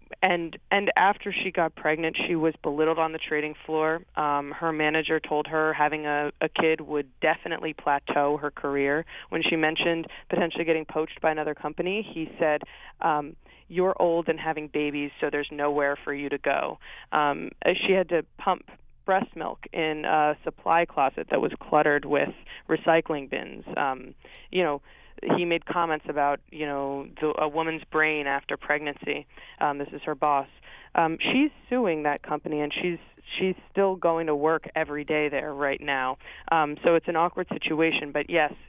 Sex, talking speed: female, 175 wpm